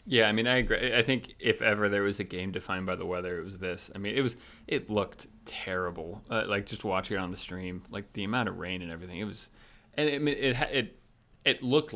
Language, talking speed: English, 255 wpm